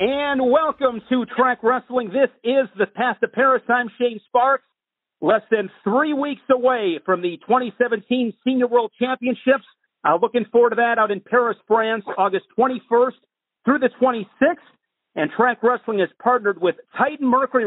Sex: male